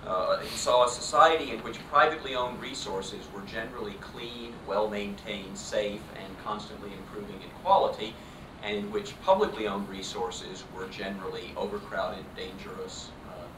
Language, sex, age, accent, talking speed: English, male, 40-59, American, 135 wpm